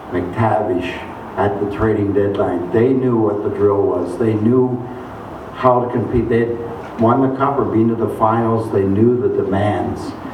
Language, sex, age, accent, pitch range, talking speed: English, male, 60-79, American, 100-120 Hz, 170 wpm